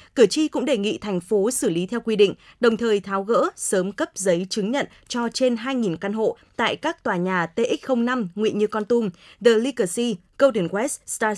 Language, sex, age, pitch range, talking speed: Vietnamese, female, 20-39, 195-250 Hz, 210 wpm